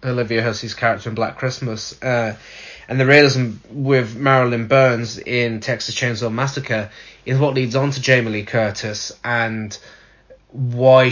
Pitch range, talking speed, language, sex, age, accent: 110-130 Hz, 145 wpm, English, male, 20-39, British